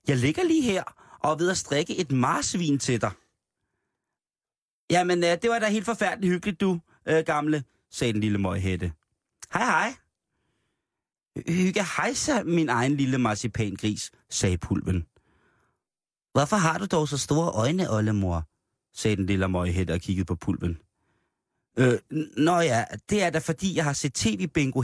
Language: Danish